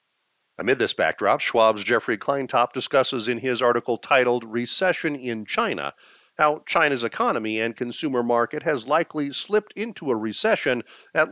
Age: 50-69